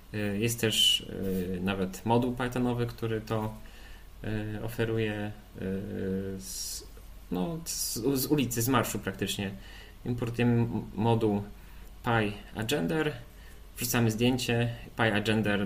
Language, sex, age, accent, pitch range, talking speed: Polish, male, 30-49, native, 95-120 Hz, 75 wpm